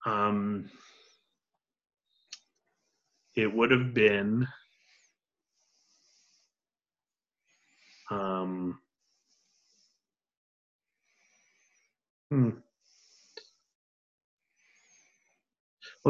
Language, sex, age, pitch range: English, male, 30-49, 105-140 Hz